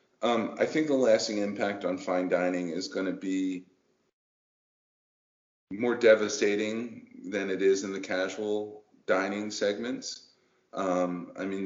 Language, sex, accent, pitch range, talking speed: English, male, American, 90-105 Hz, 135 wpm